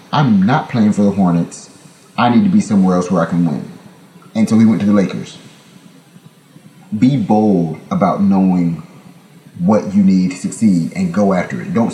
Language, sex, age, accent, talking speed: English, male, 30-49, American, 185 wpm